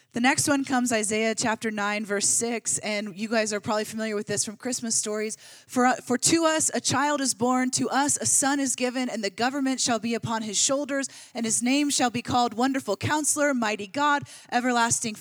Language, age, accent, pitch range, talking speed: English, 30-49, American, 220-280 Hz, 210 wpm